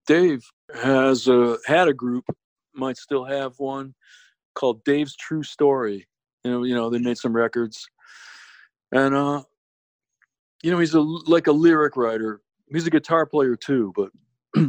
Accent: American